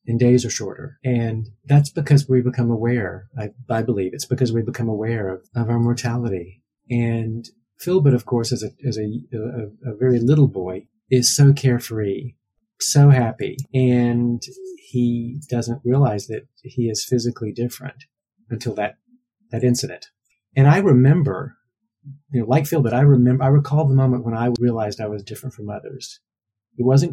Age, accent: 40-59, American